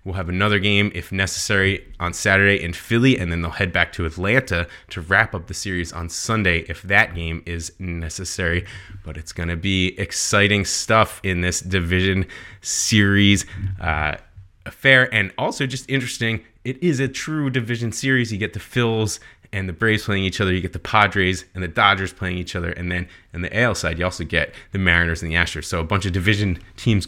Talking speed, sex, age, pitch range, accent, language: 205 wpm, male, 20-39, 90-105 Hz, American, English